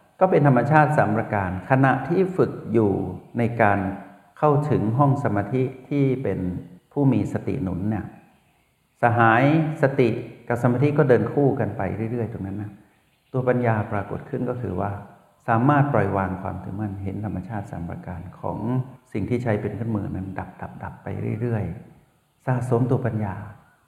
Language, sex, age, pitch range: Thai, male, 60-79, 100-135 Hz